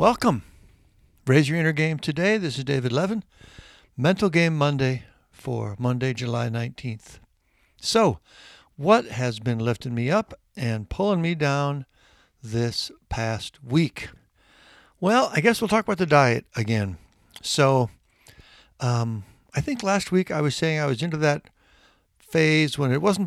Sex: male